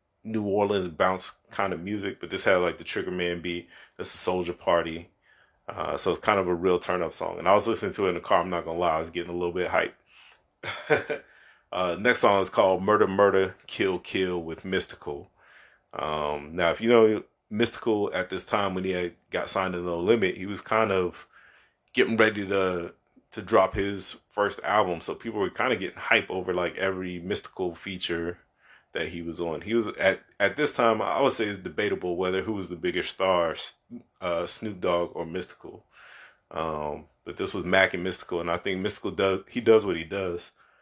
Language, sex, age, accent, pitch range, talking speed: English, male, 30-49, American, 85-100 Hz, 210 wpm